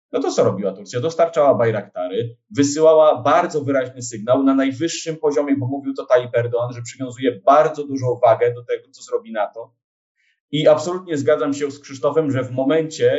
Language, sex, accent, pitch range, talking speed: Polish, male, native, 120-155 Hz, 175 wpm